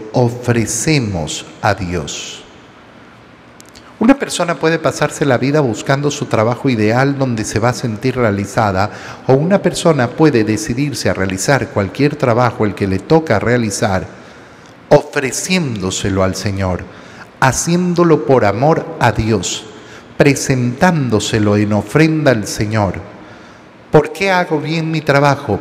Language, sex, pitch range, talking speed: Spanish, male, 105-145 Hz, 120 wpm